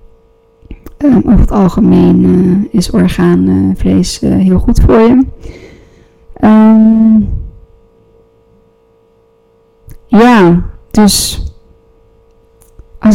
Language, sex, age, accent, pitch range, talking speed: Dutch, female, 20-39, Dutch, 180-220 Hz, 80 wpm